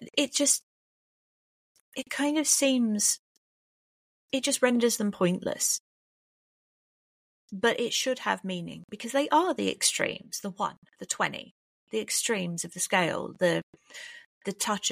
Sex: female